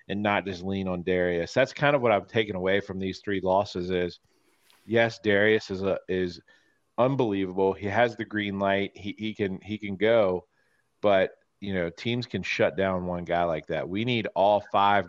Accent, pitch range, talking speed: American, 95-110 Hz, 200 wpm